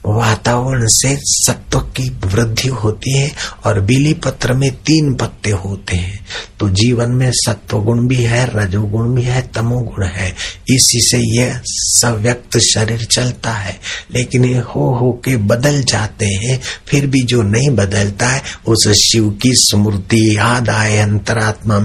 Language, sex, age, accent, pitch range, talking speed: Hindi, male, 60-79, native, 100-125 Hz, 150 wpm